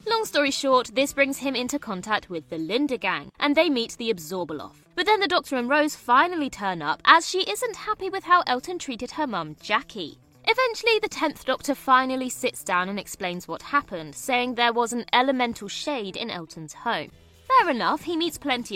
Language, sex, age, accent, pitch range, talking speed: English, female, 20-39, British, 205-315 Hz, 200 wpm